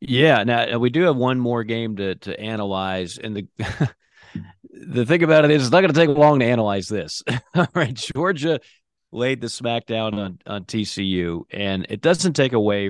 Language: English